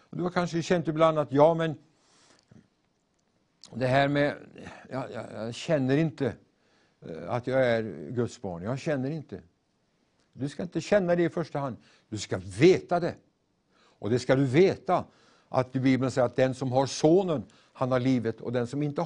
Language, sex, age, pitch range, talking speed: Swedish, male, 60-79, 125-165 Hz, 175 wpm